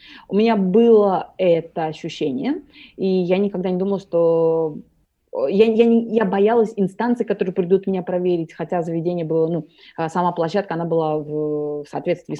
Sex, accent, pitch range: female, native, 165-225 Hz